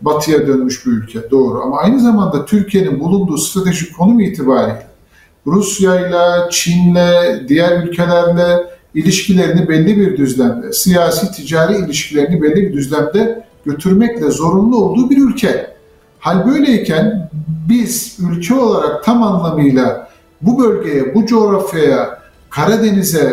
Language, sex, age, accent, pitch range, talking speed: Turkish, male, 50-69, native, 170-220 Hz, 110 wpm